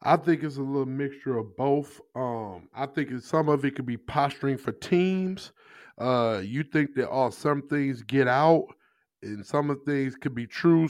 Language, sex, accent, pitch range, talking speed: English, male, American, 120-150 Hz, 205 wpm